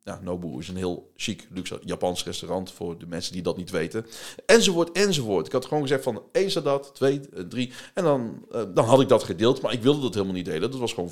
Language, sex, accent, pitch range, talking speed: Dutch, male, Dutch, 95-135 Hz, 245 wpm